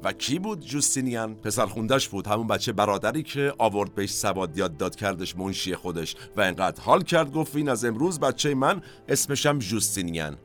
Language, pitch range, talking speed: Persian, 95-140 Hz, 170 wpm